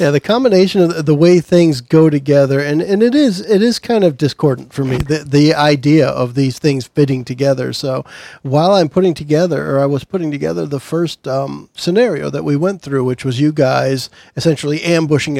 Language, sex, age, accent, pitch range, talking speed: English, male, 50-69, American, 140-170 Hz, 205 wpm